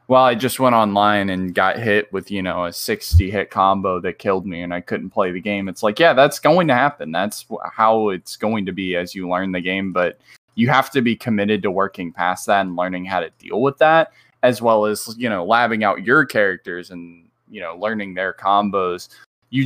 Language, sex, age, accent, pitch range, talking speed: English, male, 10-29, American, 90-115 Hz, 230 wpm